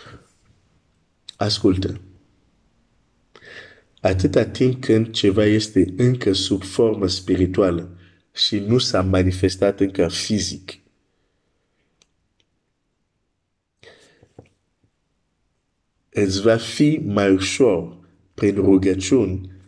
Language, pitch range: Romanian, 90-105 Hz